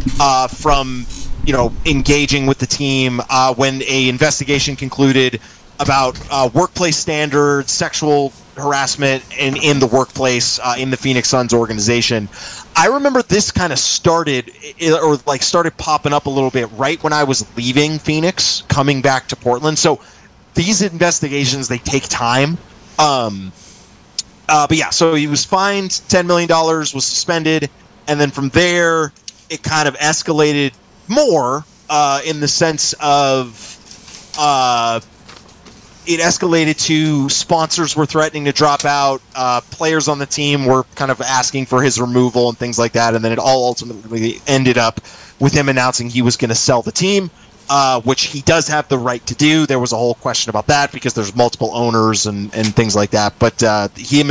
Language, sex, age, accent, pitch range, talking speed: English, male, 20-39, American, 125-155 Hz, 170 wpm